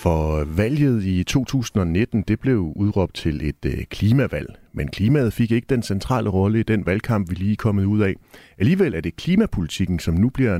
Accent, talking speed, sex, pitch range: native, 175 wpm, male, 85-115 Hz